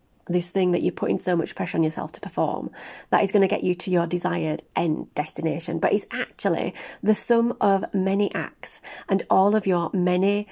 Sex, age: female, 30-49